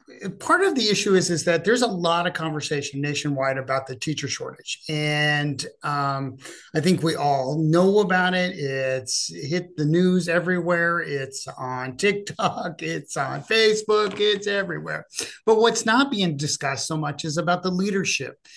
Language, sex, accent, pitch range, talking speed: English, male, American, 150-185 Hz, 160 wpm